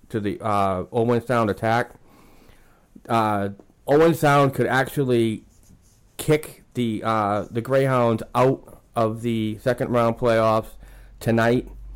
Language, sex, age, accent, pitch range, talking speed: English, male, 30-49, American, 100-120 Hz, 115 wpm